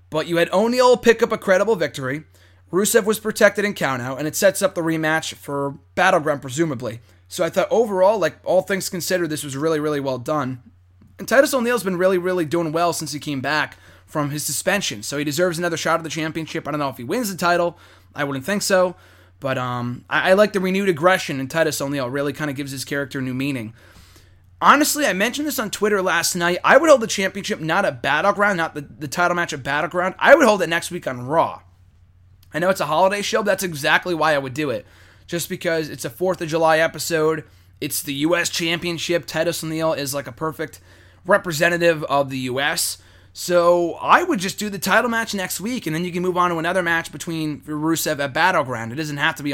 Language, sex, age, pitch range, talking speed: English, male, 20-39, 135-185 Hz, 225 wpm